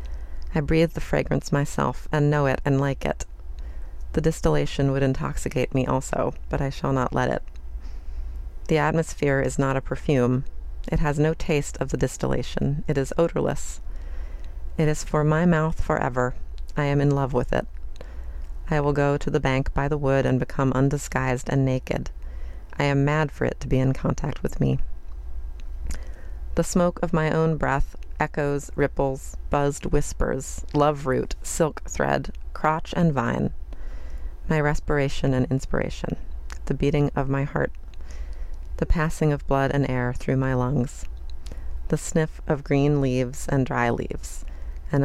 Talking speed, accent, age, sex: 160 wpm, American, 30-49, female